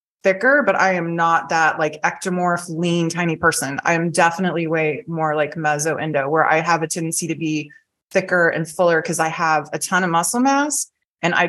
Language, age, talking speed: English, 20-39, 200 wpm